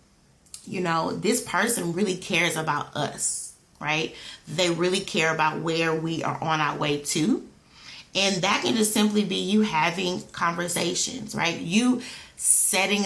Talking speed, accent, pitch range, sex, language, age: 145 wpm, American, 160-195 Hz, female, English, 30-49